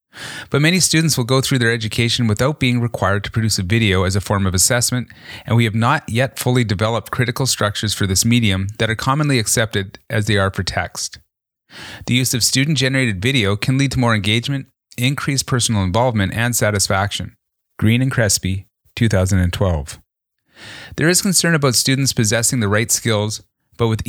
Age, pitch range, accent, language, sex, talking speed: 30-49, 100-125 Hz, American, English, male, 175 wpm